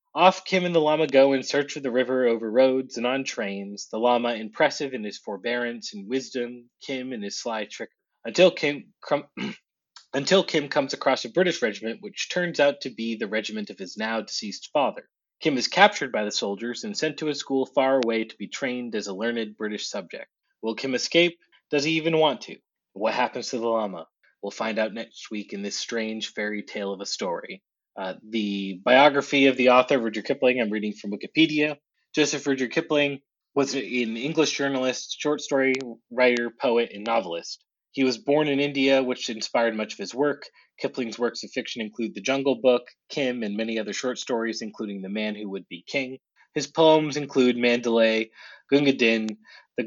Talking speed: 195 wpm